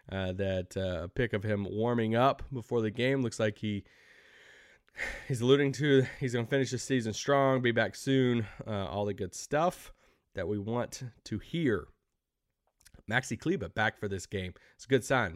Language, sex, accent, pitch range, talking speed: English, male, American, 100-135 Hz, 185 wpm